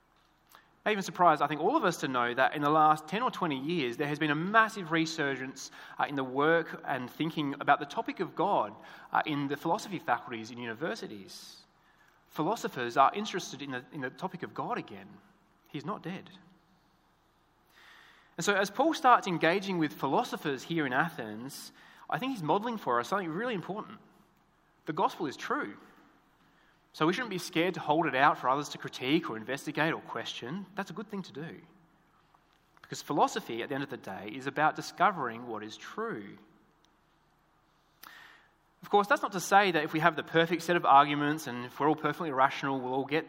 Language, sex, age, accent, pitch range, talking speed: English, male, 20-39, Australian, 140-180 Hz, 190 wpm